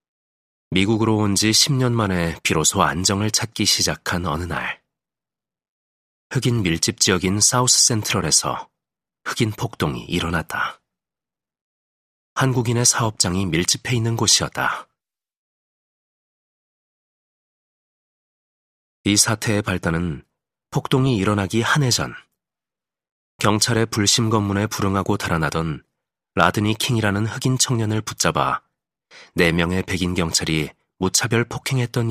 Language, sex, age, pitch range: Korean, male, 40-59, 90-115 Hz